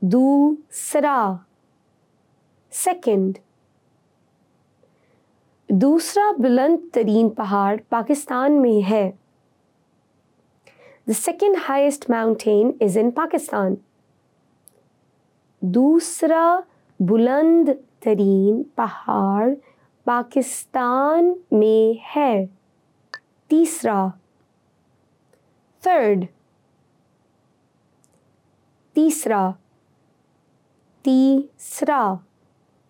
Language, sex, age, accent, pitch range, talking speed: English, female, 20-39, Indian, 200-295 Hz, 45 wpm